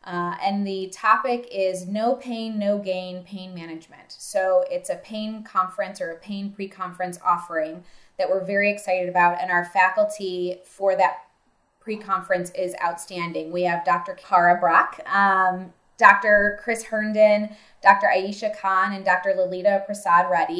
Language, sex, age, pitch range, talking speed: English, female, 20-39, 185-220 Hz, 145 wpm